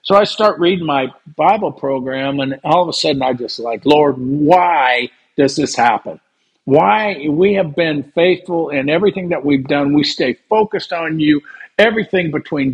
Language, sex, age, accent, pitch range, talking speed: English, male, 50-69, American, 145-185 Hz, 175 wpm